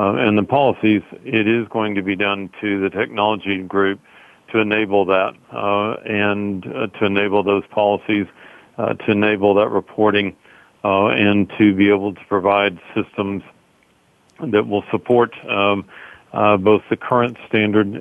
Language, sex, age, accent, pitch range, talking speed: English, male, 50-69, American, 100-105 Hz, 155 wpm